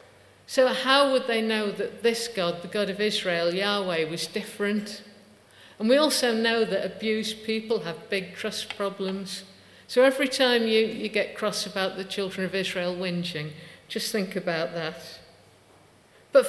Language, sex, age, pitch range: English, female, 50-69, 175-220 Hz